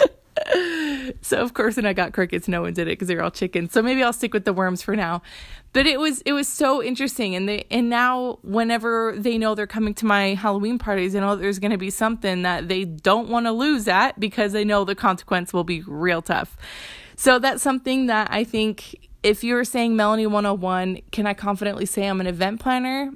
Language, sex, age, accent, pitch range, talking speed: English, female, 20-39, American, 190-235 Hz, 225 wpm